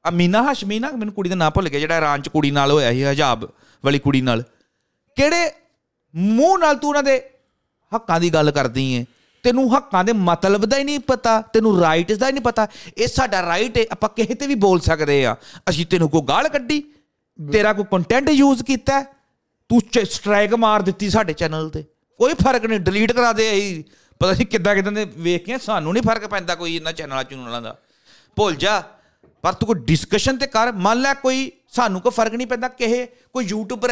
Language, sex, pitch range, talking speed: Punjabi, male, 155-235 Hz, 200 wpm